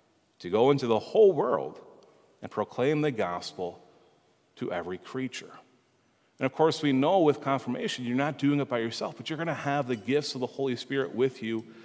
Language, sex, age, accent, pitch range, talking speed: English, male, 40-59, American, 115-150 Hz, 200 wpm